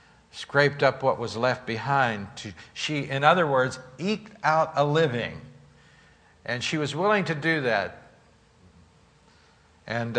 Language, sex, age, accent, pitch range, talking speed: English, male, 60-79, American, 120-160 Hz, 135 wpm